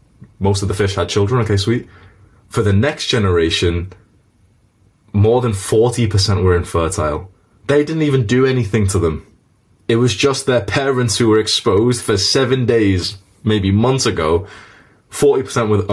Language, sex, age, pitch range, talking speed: English, male, 20-39, 95-115 Hz, 145 wpm